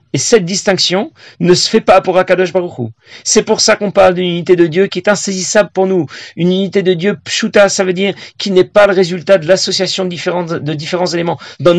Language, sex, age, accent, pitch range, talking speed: French, male, 40-59, French, 145-195 Hz, 235 wpm